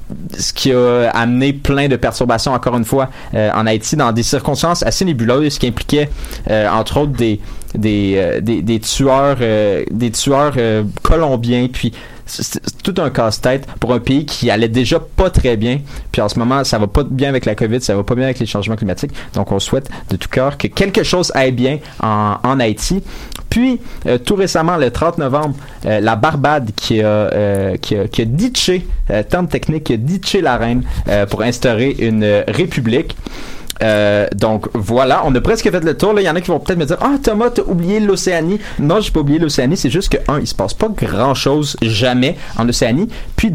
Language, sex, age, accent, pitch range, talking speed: French, male, 30-49, Canadian, 110-150 Hz, 220 wpm